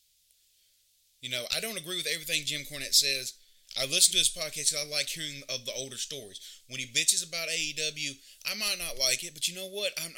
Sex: male